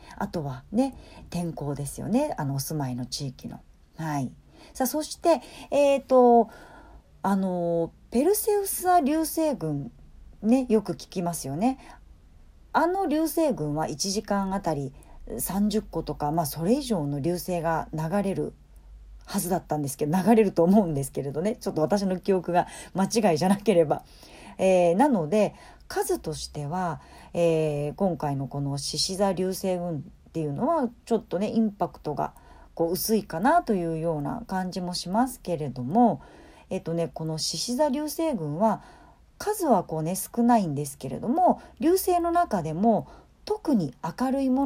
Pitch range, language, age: 160-245 Hz, Japanese, 40-59